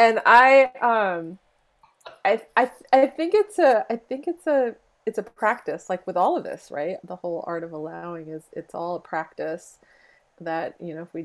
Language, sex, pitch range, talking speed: English, female, 160-190 Hz, 195 wpm